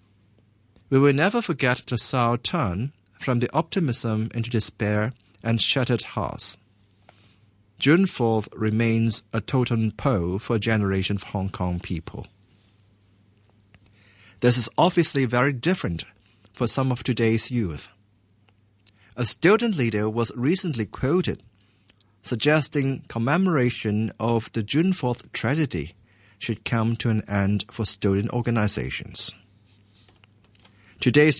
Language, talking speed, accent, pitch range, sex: English, 115 wpm, German, 100-125 Hz, male